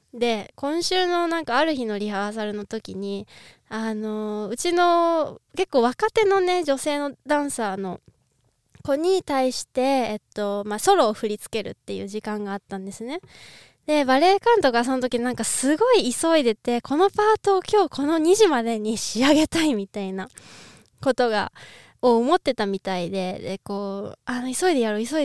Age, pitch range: 20-39, 210-330 Hz